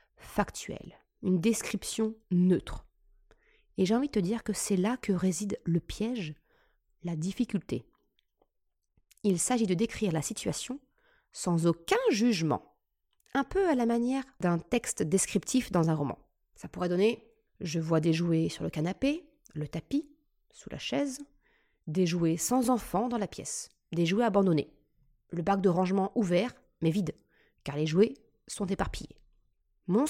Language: French